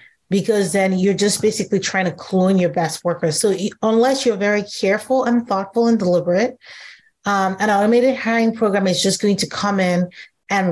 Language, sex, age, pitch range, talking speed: English, female, 30-49, 185-235 Hz, 185 wpm